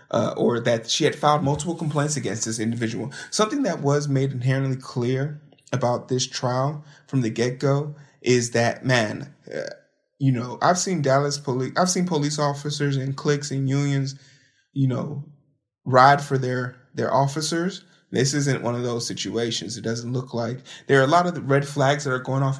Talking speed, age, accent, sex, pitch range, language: 185 wpm, 20-39, American, male, 125-155 Hz, English